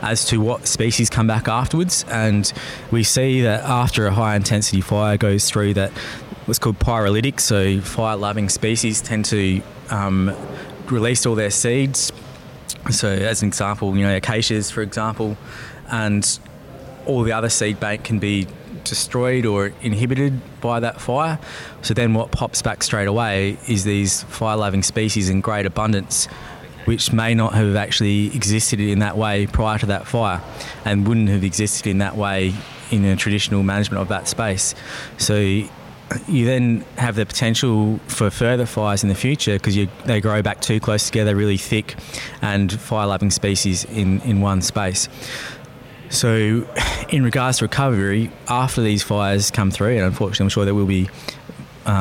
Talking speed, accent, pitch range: 165 wpm, Australian, 100-120 Hz